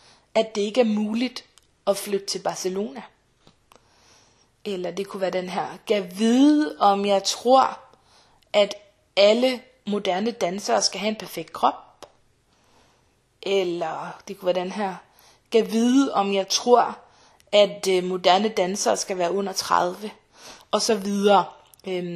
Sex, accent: female, native